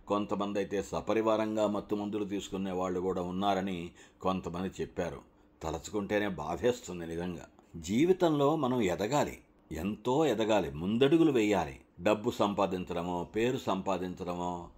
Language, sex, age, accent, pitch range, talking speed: Telugu, male, 60-79, native, 90-115 Hz, 100 wpm